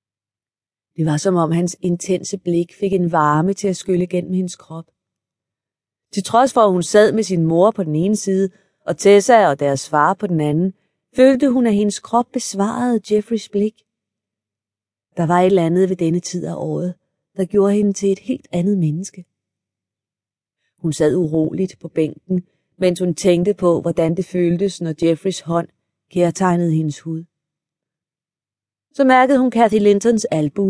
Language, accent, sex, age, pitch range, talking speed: Danish, native, female, 30-49, 155-195 Hz, 170 wpm